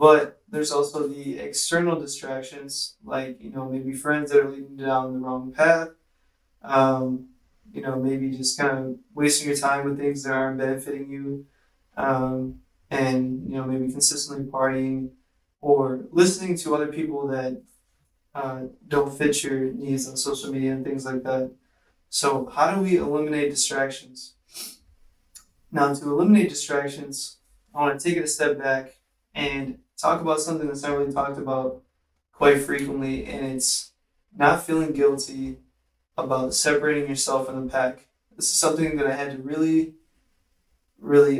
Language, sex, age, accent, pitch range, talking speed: English, male, 20-39, American, 130-150 Hz, 160 wpm